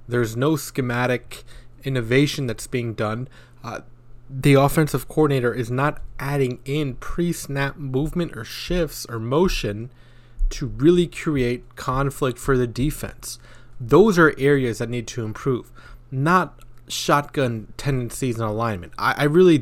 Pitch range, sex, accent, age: 120-150 Hz, male, American, 20-39